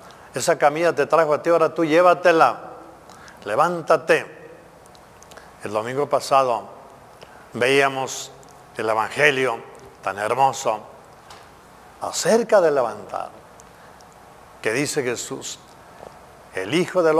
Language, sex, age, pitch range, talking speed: Spanish, male, 50-69, 135-175 Hz, 95 wpm